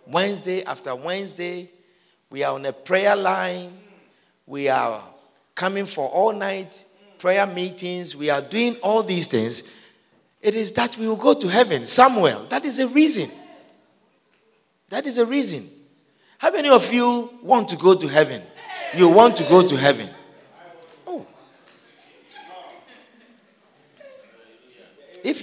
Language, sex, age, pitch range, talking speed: English, male, 50-69, 140-205 Hz, 130 wpm